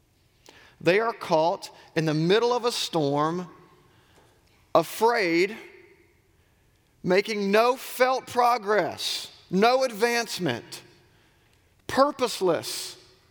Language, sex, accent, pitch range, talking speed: English, male, American, 110-185 Hz, 75 wpm